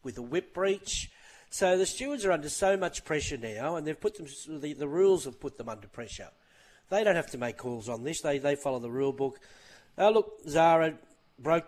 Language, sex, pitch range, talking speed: English, male, 130-165 Hz, 220 wpm